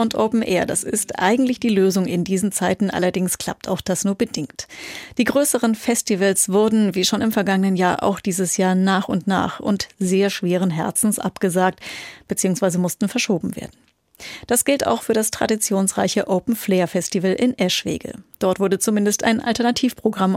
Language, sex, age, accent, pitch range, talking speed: German, female, 30-49, German, 190-225 Hz, 170 wpm